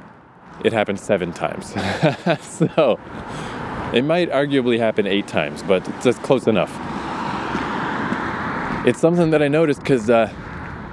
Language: English